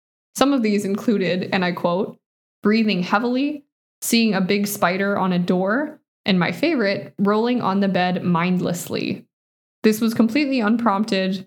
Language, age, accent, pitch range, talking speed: English, 20-39, American, 185-220 Hz, 145 wpm